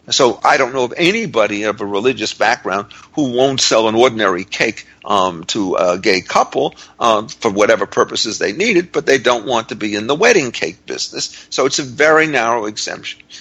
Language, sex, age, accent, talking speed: English, male, 50-69, American, 200 wpm